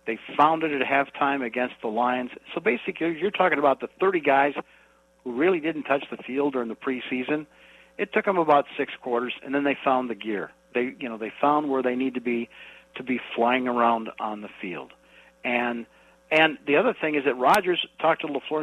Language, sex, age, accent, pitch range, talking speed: English, male, 60-79, American, 120-155 Hz, 210 wpm